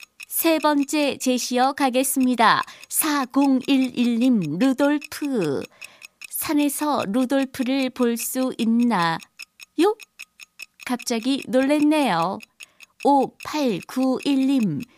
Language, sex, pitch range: Korean, female, 245-285 Hz